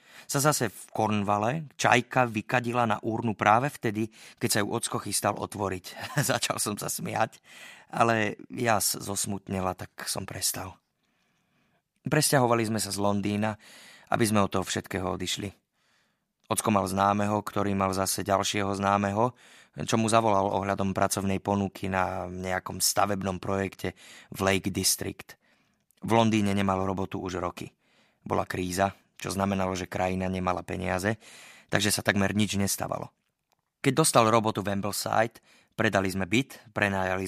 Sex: male